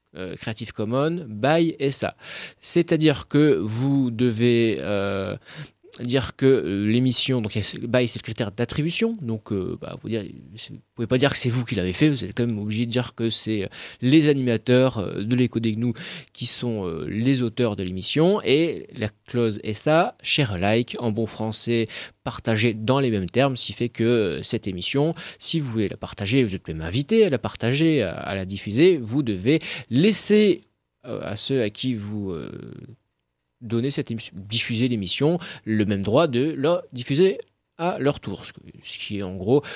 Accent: French